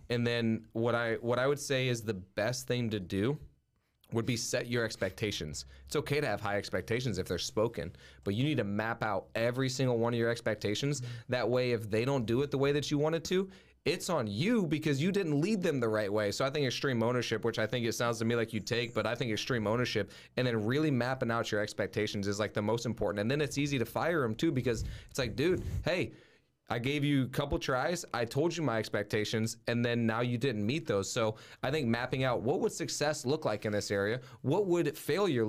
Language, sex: English, male